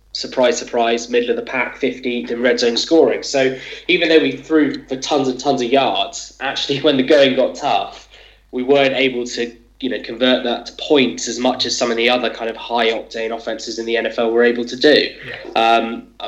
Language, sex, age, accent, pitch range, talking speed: English, male, 10-29, British, 115-150 Hz, 215 wpm